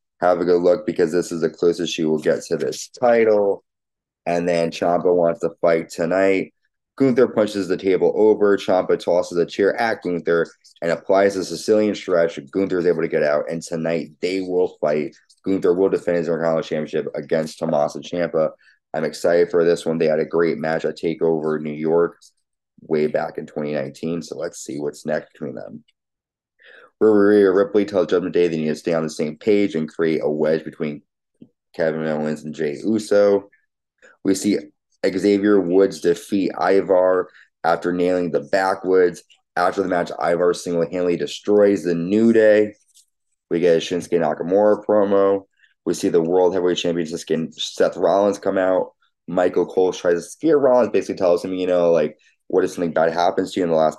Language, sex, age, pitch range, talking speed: English, male, 20-39, 85-100 Hz, 180 wpm